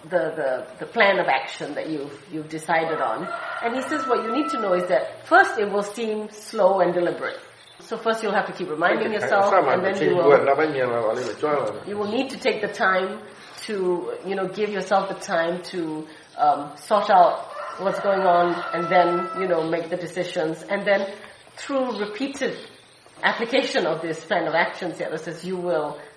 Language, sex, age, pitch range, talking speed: English, female, 30-49, 175-230 Hz, 190 wpm